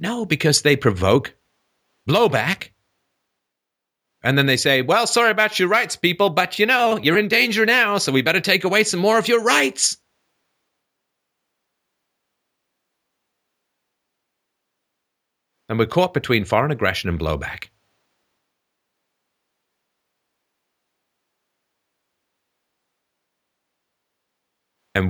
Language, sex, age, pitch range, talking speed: English, male, 50-69, 90-135 Hz, 100 wpm